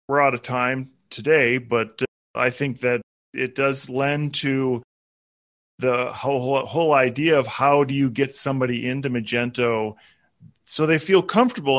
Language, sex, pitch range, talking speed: English, male, 125-160 Hz, 160 wpm